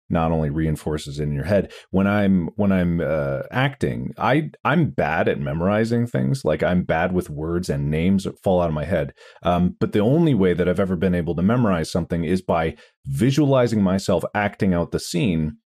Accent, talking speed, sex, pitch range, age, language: American, 200 wpm, male, 80-110 Hz, 30-49, English